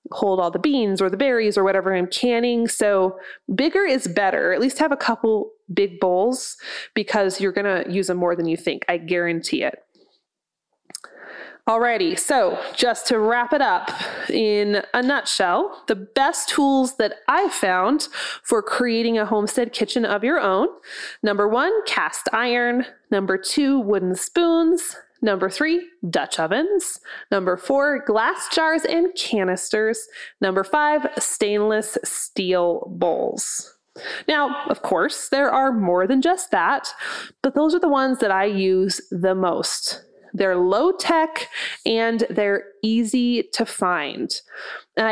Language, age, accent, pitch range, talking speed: English, 20-39, American, 195-280 Hz, 145 wpm